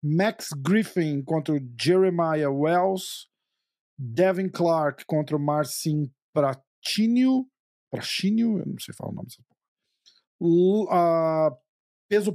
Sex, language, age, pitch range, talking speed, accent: male, Portuguese, 50-69, 145-190 Hz, 105 wpm, Brazilian